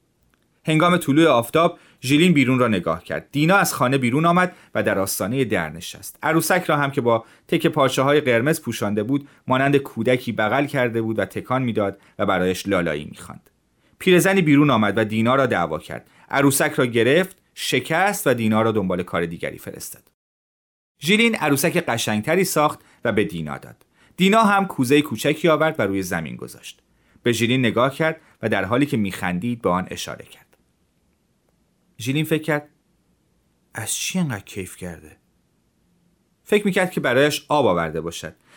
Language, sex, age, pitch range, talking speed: Persian, male, 30-49, 105-155 Hz, 165 wpm